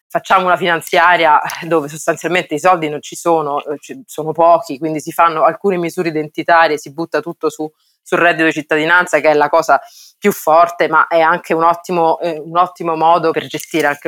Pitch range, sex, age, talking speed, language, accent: 155-180 Hz, female, 20-39, 185 wpm, Italian, native